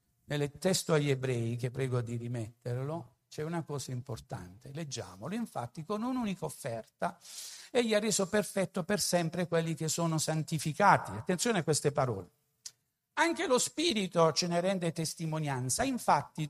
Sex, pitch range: male, 155-225 Hz